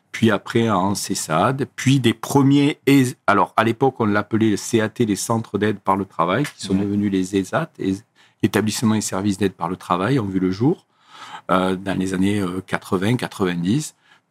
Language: French